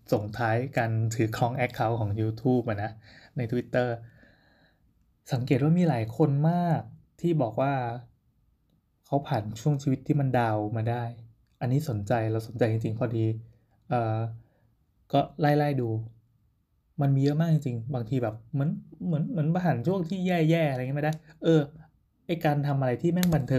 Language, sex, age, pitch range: Thai, male, 20-39, 115-145 Hz